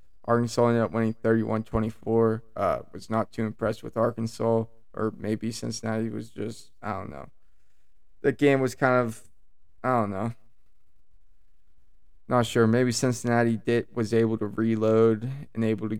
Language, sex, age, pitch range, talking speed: English, male, 20-39, 110-115 Hz, 150 wpm